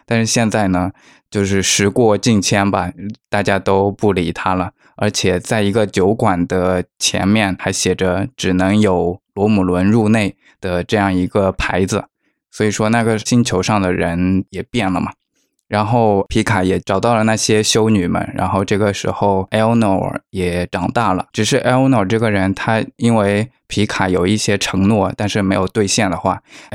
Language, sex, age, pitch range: Chinese, male, 20-39, 95-110 Hz